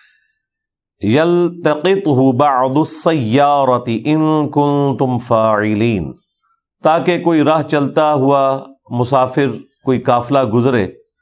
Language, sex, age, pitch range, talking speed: Urdu, male, 50-69, 115-150 Hz, 80 wpm